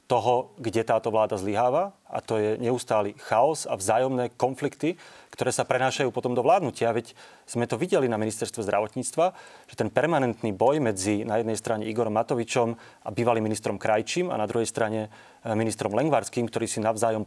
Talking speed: 170 wpm